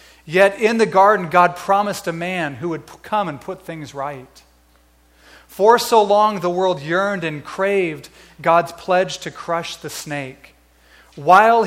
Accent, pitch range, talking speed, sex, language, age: American, 120-180 Hz, 155 wpm, male, English, 40-59